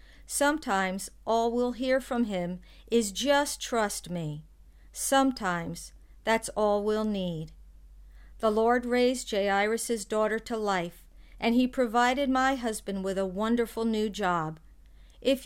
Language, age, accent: English, 50-69, American